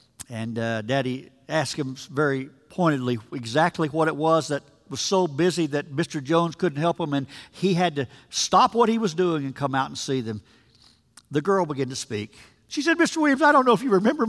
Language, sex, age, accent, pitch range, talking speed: English, male, 50-69, American, 155-230 Hz, 215 wpm